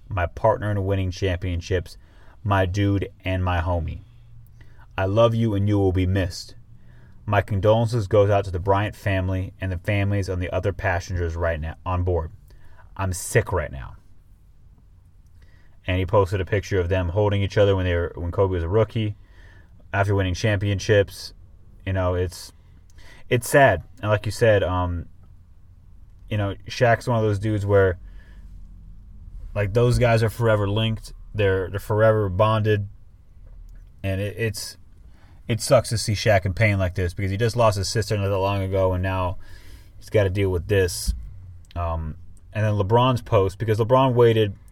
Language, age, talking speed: English, 30-49, 170 wpm